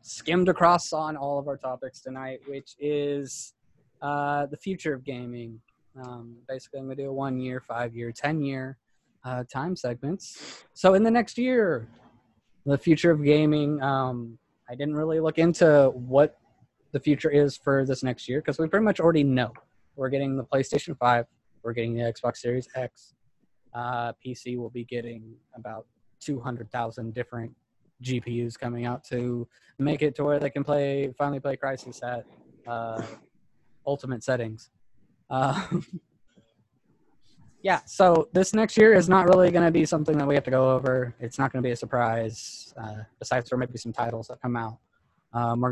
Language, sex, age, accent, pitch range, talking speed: English, male, 20-39, American, 120-145 Hz, 175 wpm